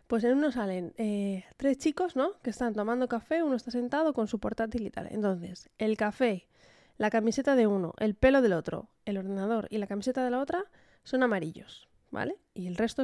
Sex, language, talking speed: female, Spanish, 205 wpm